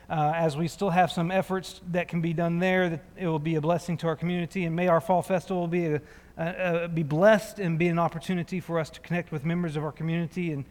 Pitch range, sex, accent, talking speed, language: 160-185 Hz, male, American, 260 wpm, English